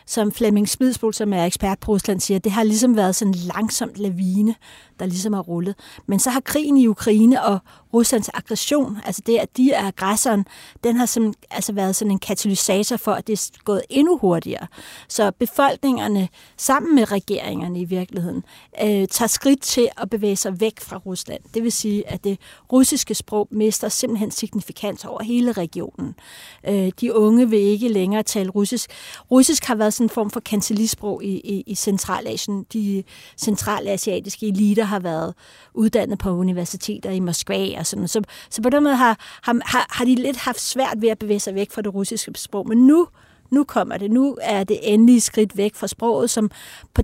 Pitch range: 195-235 Hz